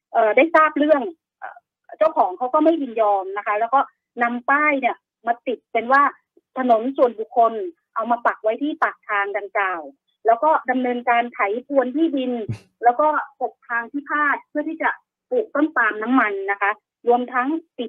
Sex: female